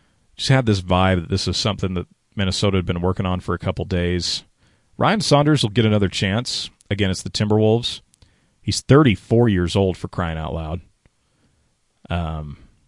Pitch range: 90-115 Hz